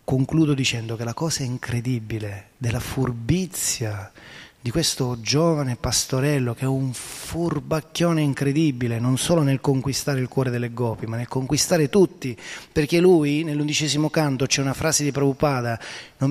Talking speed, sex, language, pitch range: 145 wpm, male, Italian, 125-165 Hz